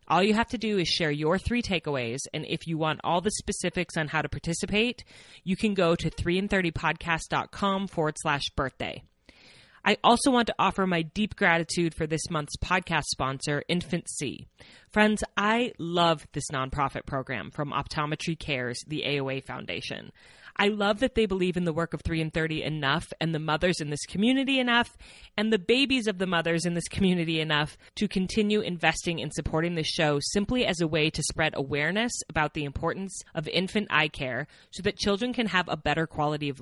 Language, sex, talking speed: English, female, 190 wpm